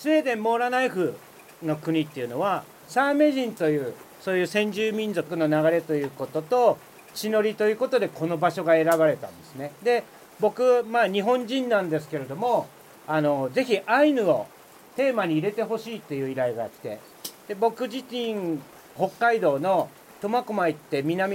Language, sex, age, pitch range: Japanese, male, 40-59, 155-235 Hz